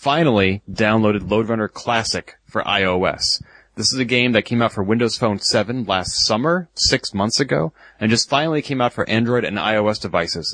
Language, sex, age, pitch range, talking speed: English, male, 30-49, 95-115 Hz, 180 wpm